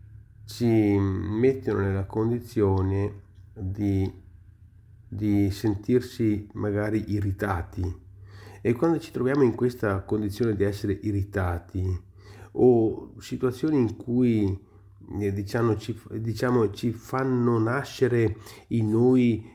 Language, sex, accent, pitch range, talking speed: Italian, male, native, 100-120 Hz, 95 wpm